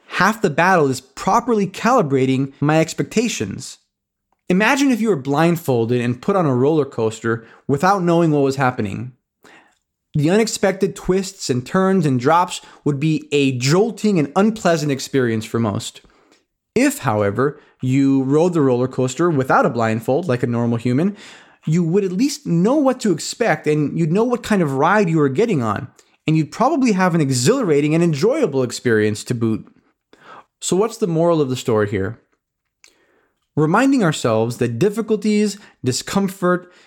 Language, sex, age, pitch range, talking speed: English, male, 20-39, 130-190 Hz, 160 wpm